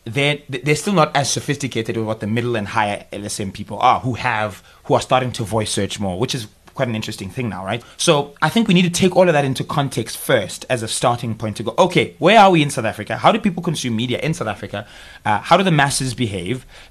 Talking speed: 255 wpm